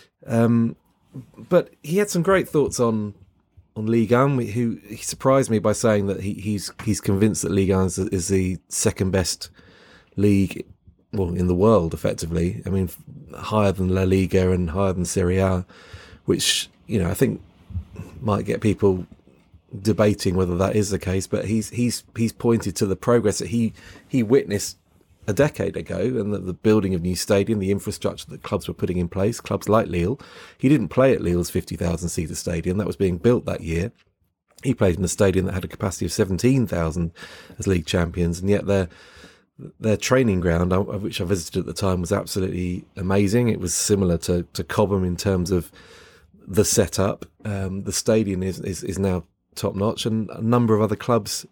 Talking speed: 190 wpm